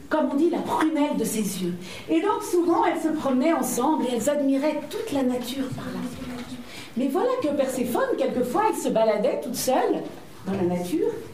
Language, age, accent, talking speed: French, 50-69, French, 190 wpm